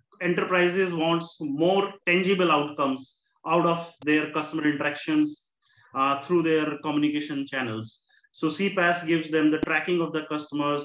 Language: English